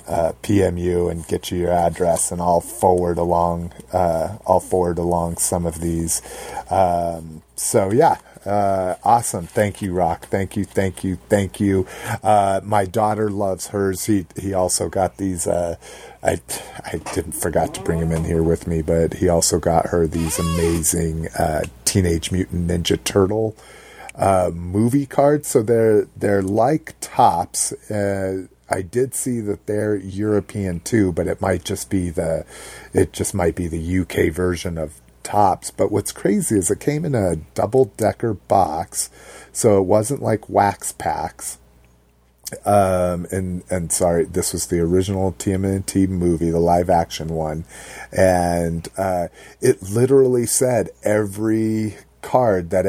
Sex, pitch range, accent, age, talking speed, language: male, 85-100 Hz, American, 30-49, 150 wpm, English